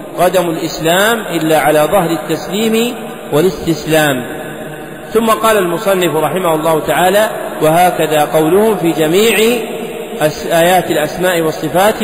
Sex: male